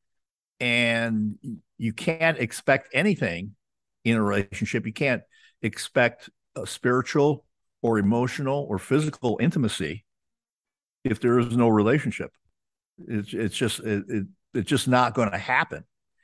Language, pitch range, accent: English, 100-125 Hz, American